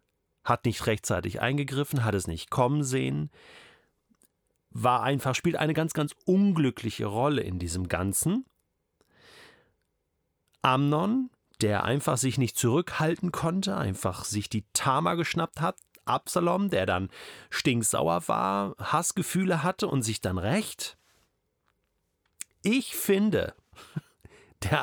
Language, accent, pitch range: German, German, 115-175 Hz